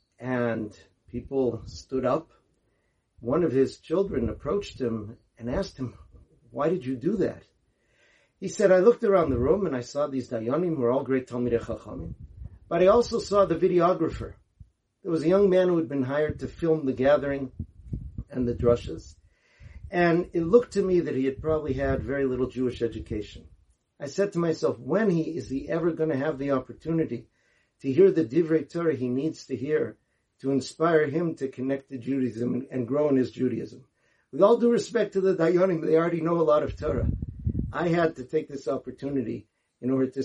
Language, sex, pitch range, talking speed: English, male, 125-170 Hz, 190 wpm